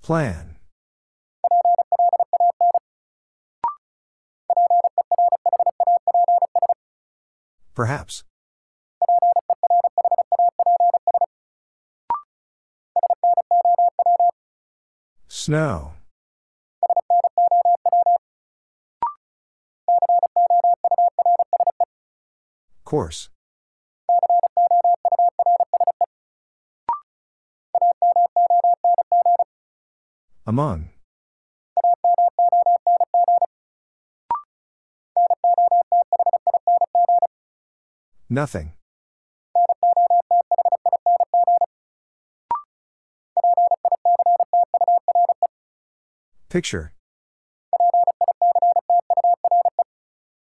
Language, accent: English, American